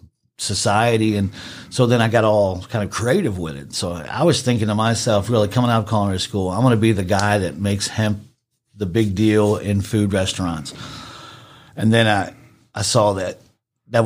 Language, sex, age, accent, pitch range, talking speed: English, male, 50-69, American, 95-115 Hz, 195 wpm